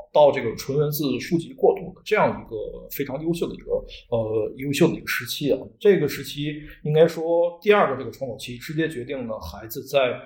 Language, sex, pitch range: Chinese, male, 145-200 Hz